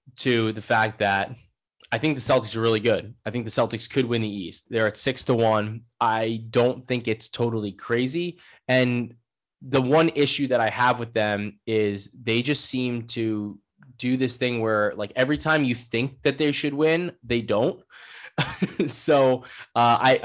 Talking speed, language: 185 wpm, English